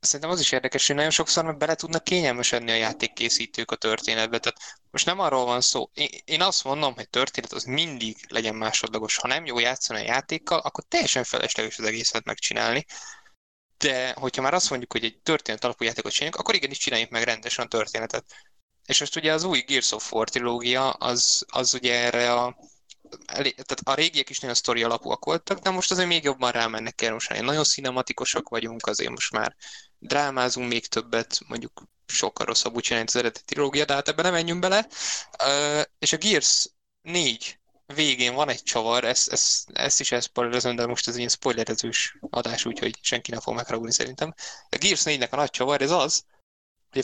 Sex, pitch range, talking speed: male, 120-150 Hz, 190 wpm